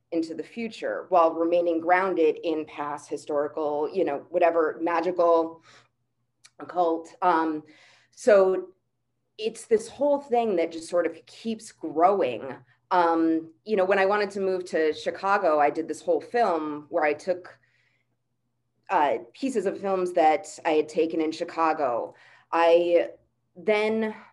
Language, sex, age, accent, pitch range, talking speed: English, female, 20-39, American, 160-195 Hz, 135 wpm